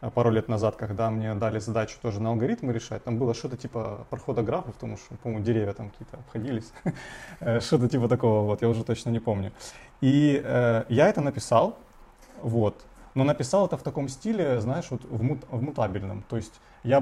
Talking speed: 175 wpm